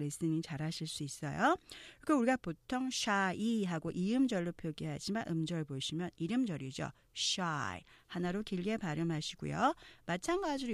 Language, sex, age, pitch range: Korean, female, 40-59, 160-255 Hz